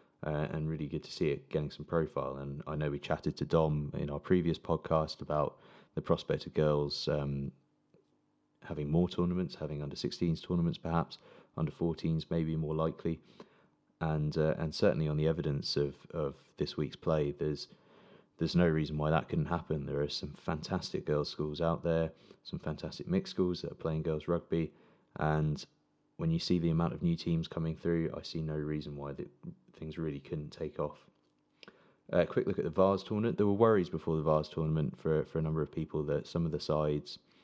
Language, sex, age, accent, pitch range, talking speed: English, male, 20-39, British, 75-85 Hz, 200 wpm